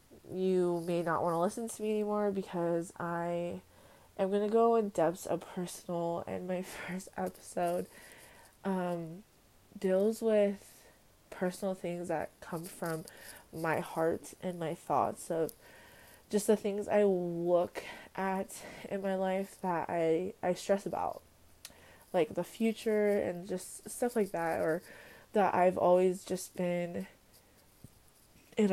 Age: 20-39